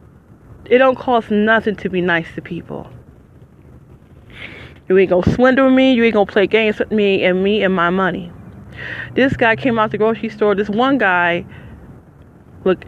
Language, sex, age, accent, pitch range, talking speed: English, female, 20-39, American, 190-245 Hz, 180 wpm